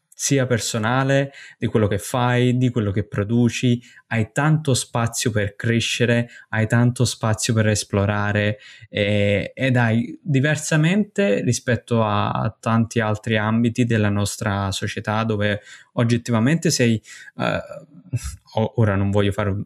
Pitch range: 105-125 Hz